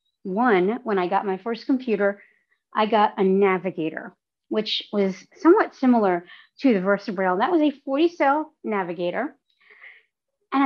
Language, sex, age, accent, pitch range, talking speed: English, female, 40-59, American, 185-235 Hz, 140 wpm